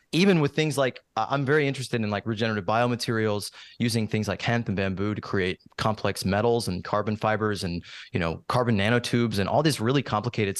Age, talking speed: 20-39, 190 wpm